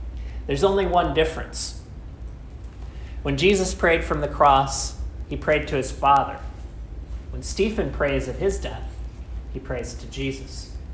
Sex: male